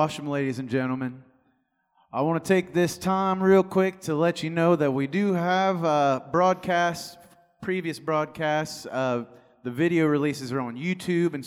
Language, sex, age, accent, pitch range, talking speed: English, male, 30-49, American, 145-175 Hz, 160 wpm